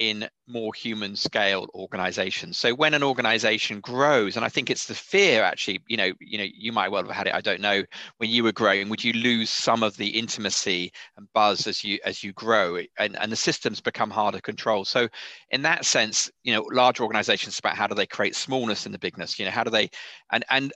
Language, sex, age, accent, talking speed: English, male, 40-59, British, 230 wpm